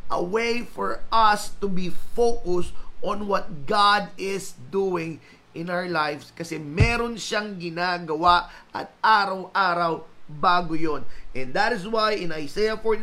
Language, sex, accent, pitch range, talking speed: Filipino, male, native, 130-180 Hz, 135 wpm